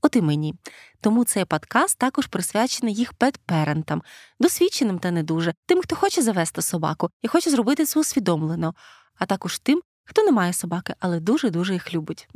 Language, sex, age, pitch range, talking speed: Ukrainian, female, 20-39, 180-270 Hz, 170 wpm